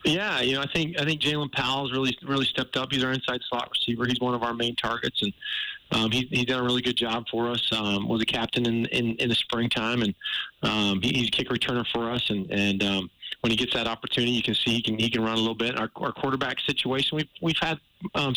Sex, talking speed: male, 260 wpm